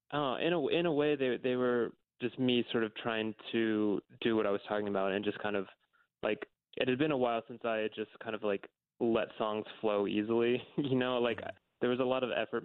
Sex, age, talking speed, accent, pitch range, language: male, 20-39, 240 wpm, American, 105-120 Hz, English